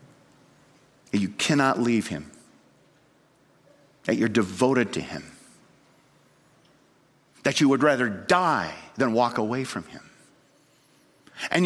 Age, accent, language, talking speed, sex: 50-69, American, English, 105 wpm, male